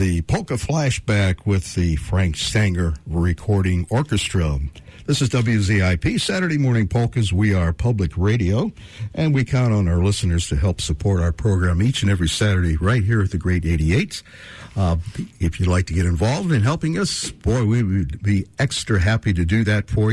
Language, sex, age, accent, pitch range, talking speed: English, male, 60-79, American, 85-115 Hz, 180 wpm